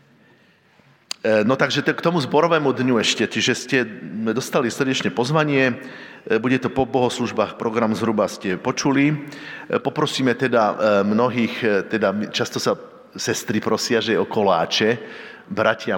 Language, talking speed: Slovak, 125 wpm